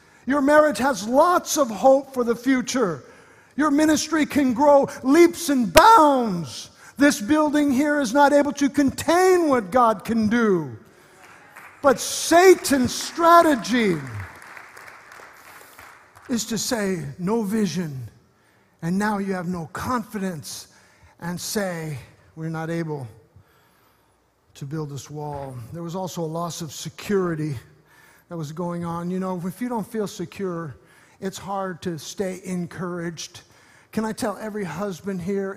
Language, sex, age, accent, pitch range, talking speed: English, male, 50-69, American, 170-220 Hz, 135 wpm